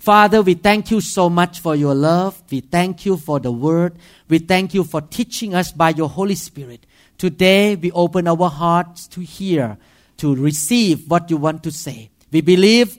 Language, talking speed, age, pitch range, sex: English, 190 wpm, 50-69, 150-200 Hz, male